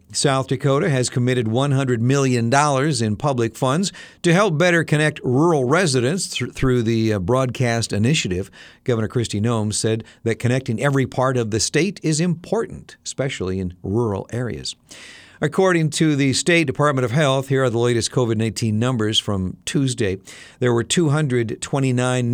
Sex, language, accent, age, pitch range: male, Japanese, American, 50-69, 110-140 Hz